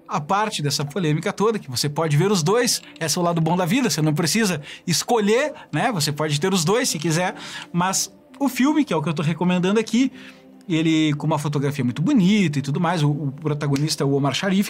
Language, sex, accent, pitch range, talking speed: Portuguese, male, Brazilian, 155-230 Hz, 235 wpm